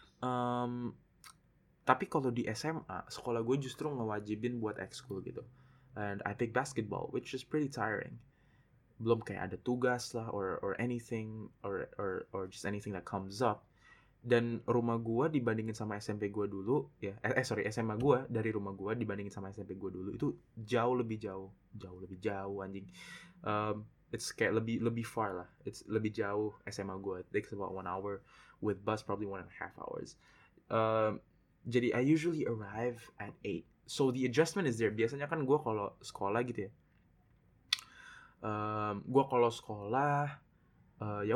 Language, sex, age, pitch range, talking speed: Indonesian, male, 20-39, 105-130 Hz, 165 wpm